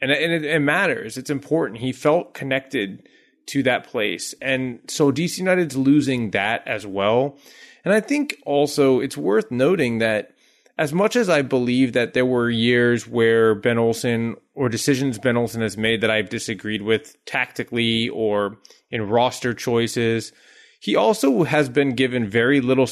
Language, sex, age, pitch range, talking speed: English, male, 30-49, 110-135 Hz, 160 wpm